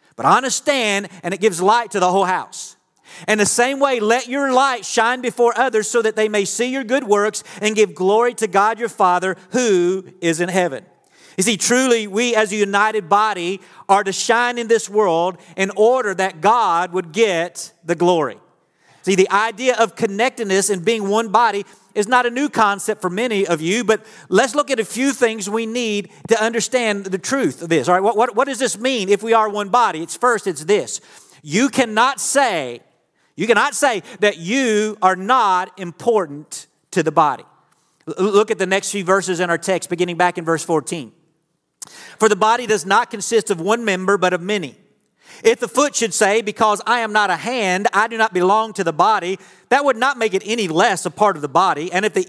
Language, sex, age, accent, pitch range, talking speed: English, male, 40-59, American, 190-235 Hz, 215 wpm